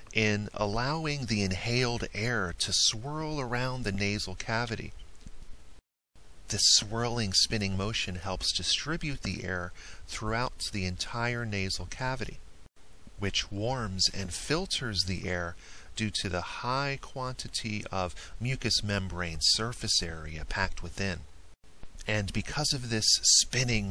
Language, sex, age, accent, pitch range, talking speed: English, male, 40-59, American, 90-120 Hz, 120 wpm